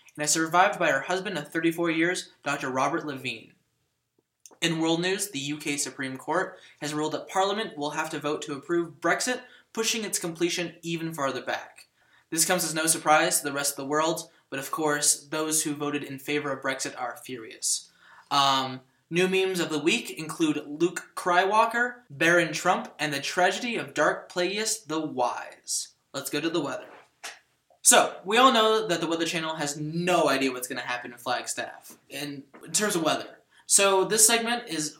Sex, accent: male, American